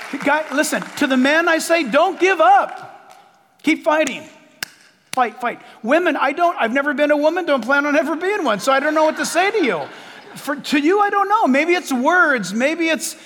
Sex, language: male, English